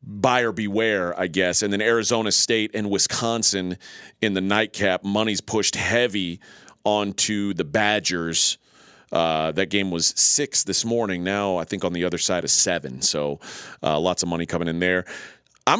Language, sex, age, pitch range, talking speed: English, male, 40-59, 100-125 Hz, 165 wpm